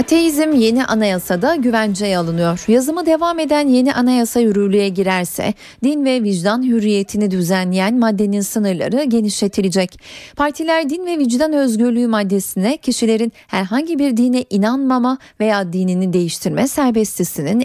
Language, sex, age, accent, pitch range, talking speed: Turkish, female, 40-59, native, 195-255 Hz, 120 wpm